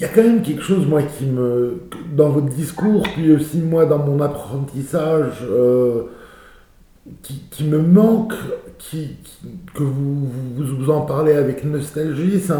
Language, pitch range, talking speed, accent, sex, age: English, 140-185 Hz, 150 wpm, French, male, 50-69